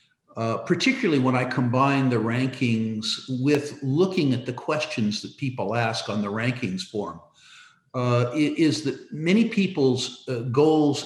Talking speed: 145 wpm